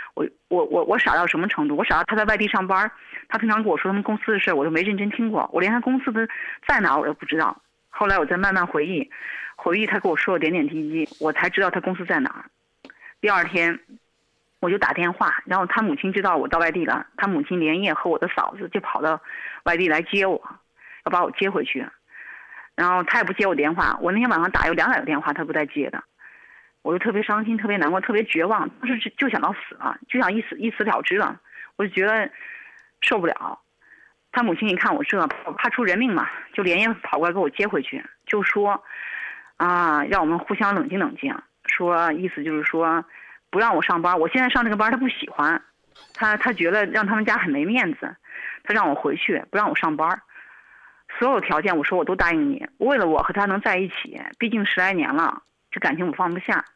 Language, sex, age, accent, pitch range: Chinese, female, 30-49, native, 180-250 Hz